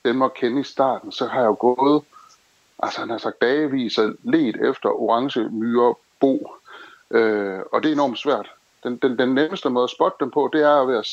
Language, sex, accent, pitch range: Danish, male, native, 110-140 Hz